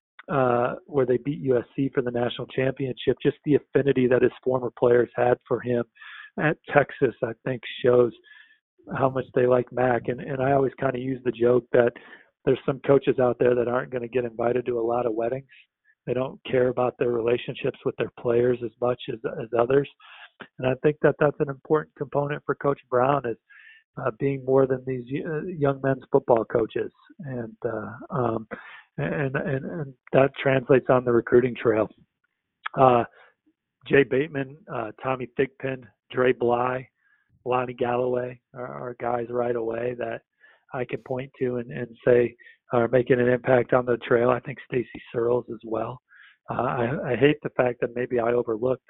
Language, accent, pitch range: English, American, 120-135 Hz